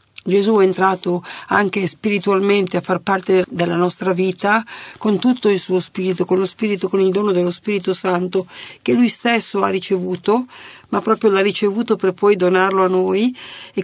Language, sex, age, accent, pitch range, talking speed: Italian, female, 50-69, native, 185-220 Hz, 175 wpm